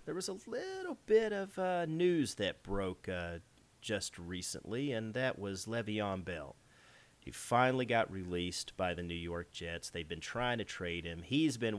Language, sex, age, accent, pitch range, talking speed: English, male, 40-59, American, 90-120 Hz, 180 wpm